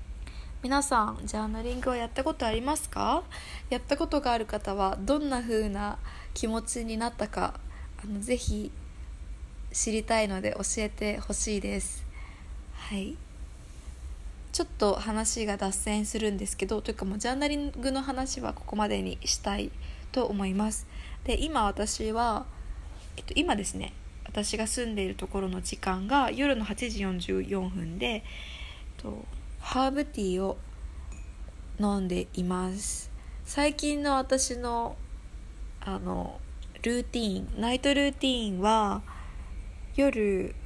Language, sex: Japanese, female